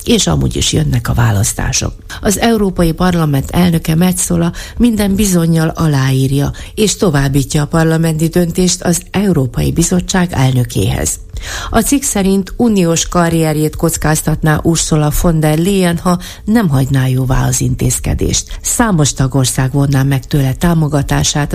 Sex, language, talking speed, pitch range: female, Hungarian, 125 wpm, 120-175 Hz